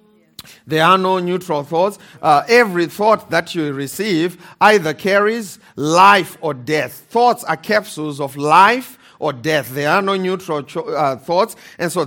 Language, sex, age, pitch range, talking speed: English, male, 40-59, 140-185 Hz, 160 wpm